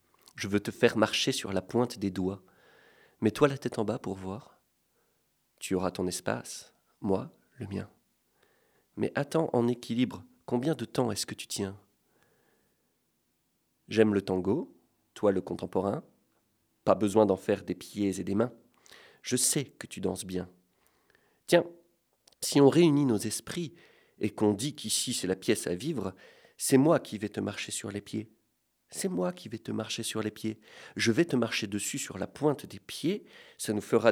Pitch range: 95-125 Hz